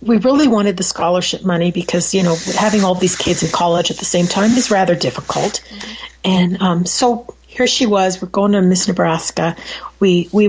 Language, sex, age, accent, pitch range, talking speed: English, female, 40-59, American, 175-230 Hz, 200 wpm